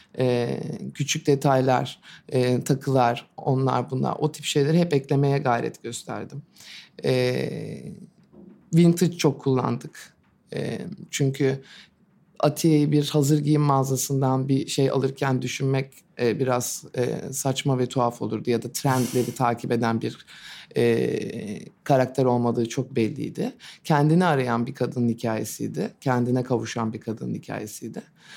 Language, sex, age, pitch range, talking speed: Turkish, male, 60-79, 125-170 Hz, 125 wpm